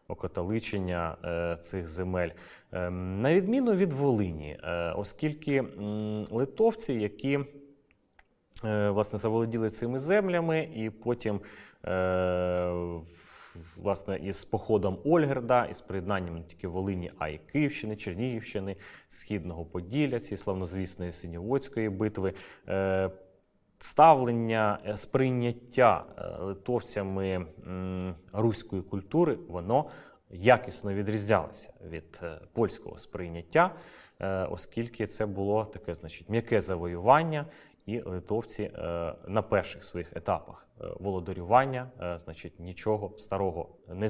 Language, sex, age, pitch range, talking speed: Ukrainian, male, 30-49, 90-125 Hz, 85 wpm